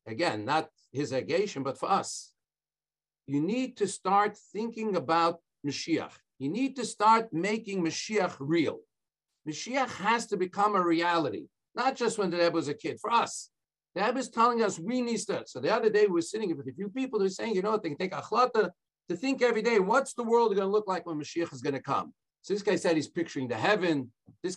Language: English